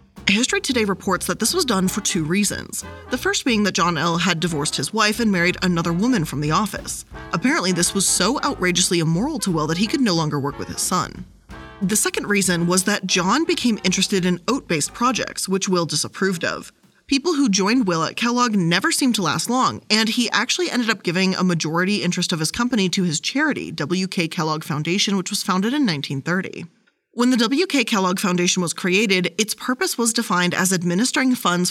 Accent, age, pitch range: American, 20-39, 180-235 Hz